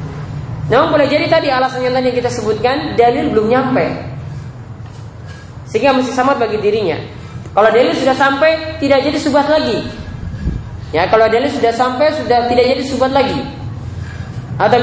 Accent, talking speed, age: native, 140 wpm, 20-39